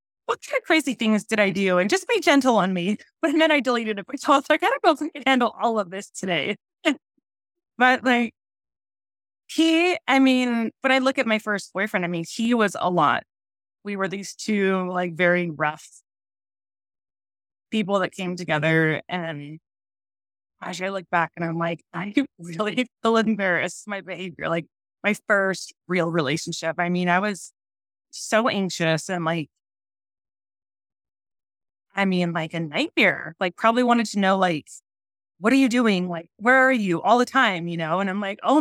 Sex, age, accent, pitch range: female, 20-39, American, 165-225 Hz